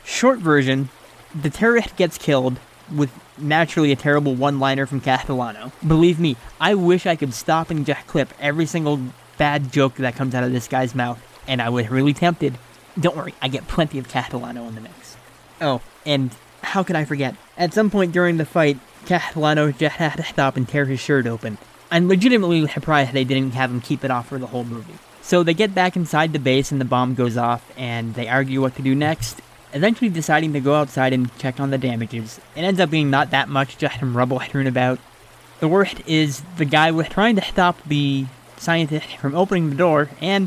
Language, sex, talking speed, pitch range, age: English, male, 210 wpm, 130-165 Hz, 20-39